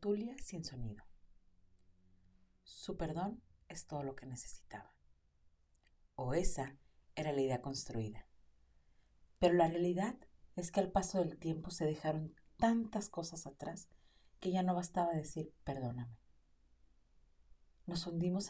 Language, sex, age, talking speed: Spanish, female, 40-59, 125 wpm